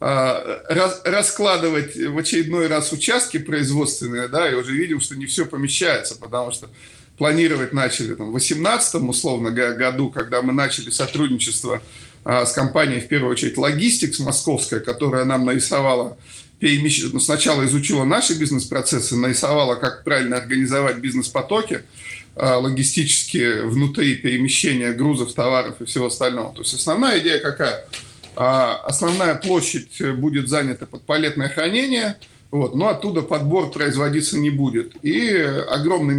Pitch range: 125-155 Hz